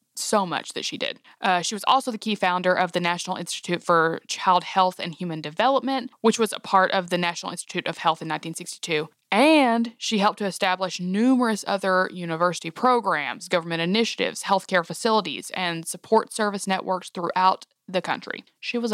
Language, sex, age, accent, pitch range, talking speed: English, female, 20-39, American, 170-215 Hz, 175 wpm